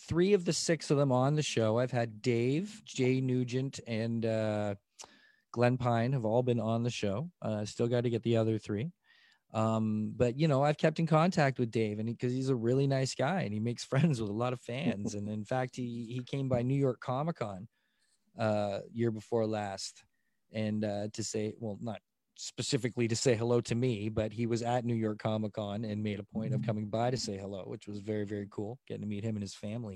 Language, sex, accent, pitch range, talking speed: English, male, American, 110-130 Hz, 225 wpm